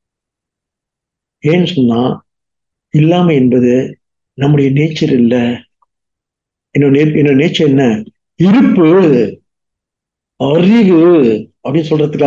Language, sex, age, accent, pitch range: English, male, 50-69, Indian, 145-200 Hz